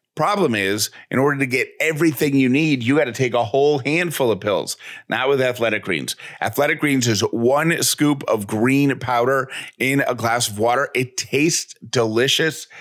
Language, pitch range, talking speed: English, 110-140 Hz, 175 wpm